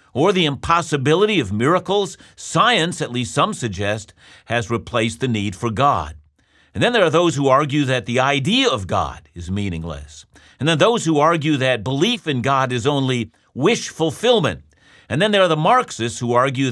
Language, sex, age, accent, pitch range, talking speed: English, male, 50-69, American, 115-160 Hz, 185 wpm